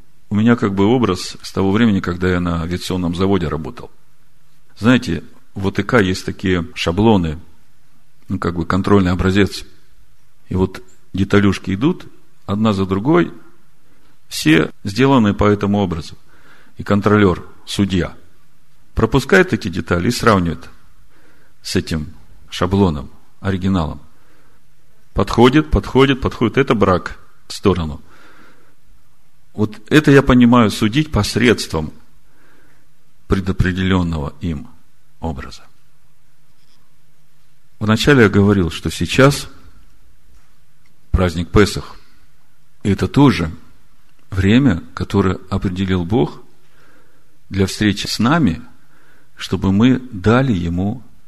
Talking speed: 100 wpm